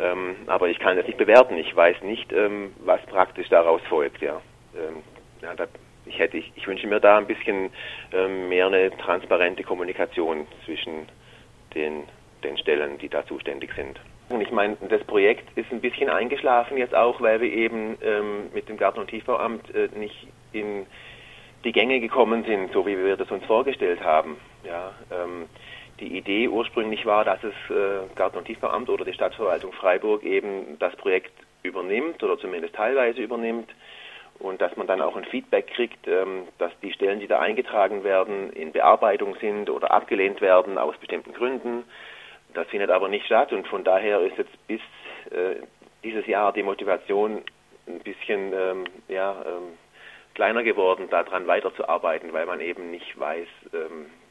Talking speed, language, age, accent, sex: 170 wpm, German, 40-59, German, male